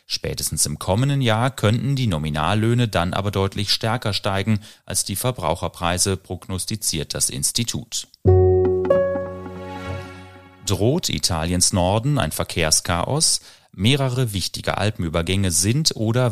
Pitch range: 90-115 Hz